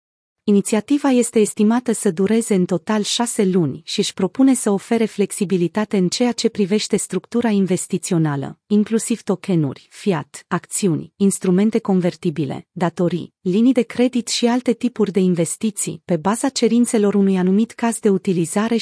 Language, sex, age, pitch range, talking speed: Romanian, female, 30-49, 180-225 Hz, 140 wpm